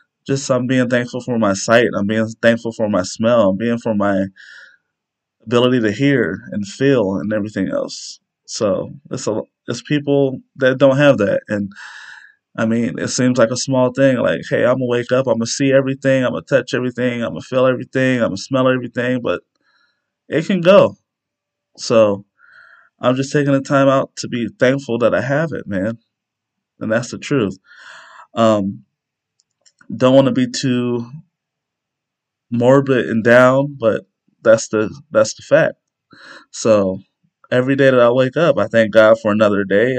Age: 20-39